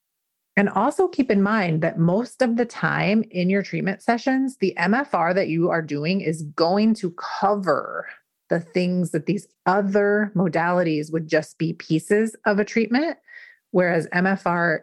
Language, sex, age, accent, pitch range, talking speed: English, female, 30-49, American, 165-205 Hz, 160 wpm